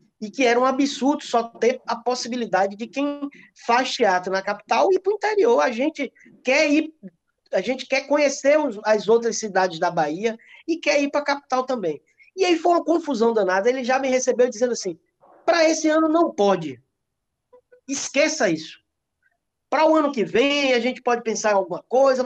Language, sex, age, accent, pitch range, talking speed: Portuguese, male, 20-39, Brazilian, 230-295 Hz, 180 wpm